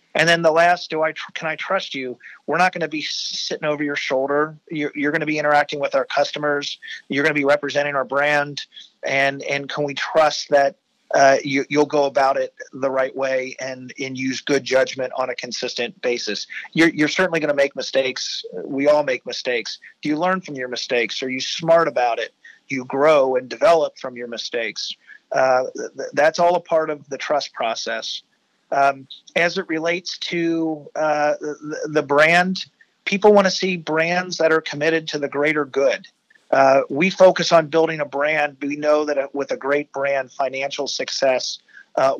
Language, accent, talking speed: English, American, 195 wpm